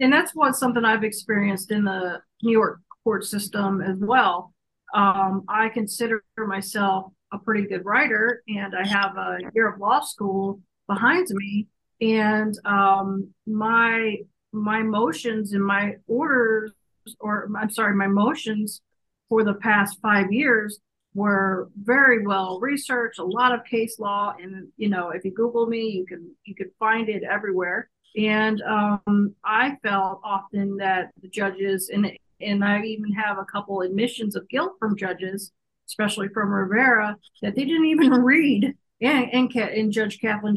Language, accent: English, American